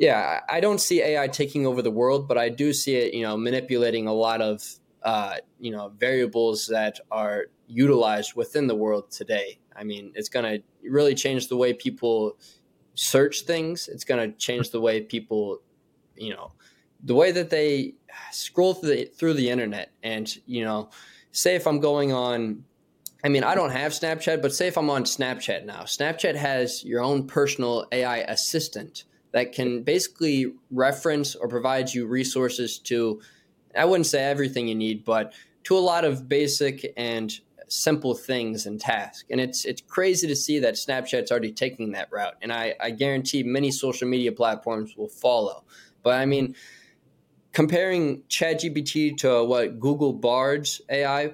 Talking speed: 170 wpm